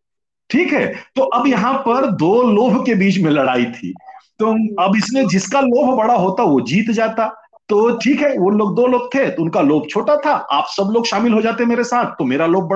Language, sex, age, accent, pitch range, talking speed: Hindi, male, 50-69, native, 190-265 Hz, 120 wpm